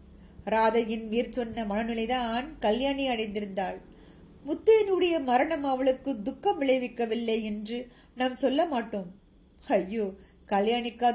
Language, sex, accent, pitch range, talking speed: Tamil, female, native, 225-270 Hz, 90 wpm